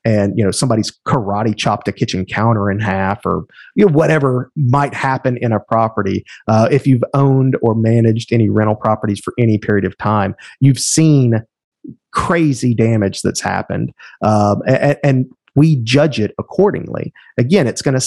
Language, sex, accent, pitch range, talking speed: English, male, American, 105-135 Hz, 170 wpm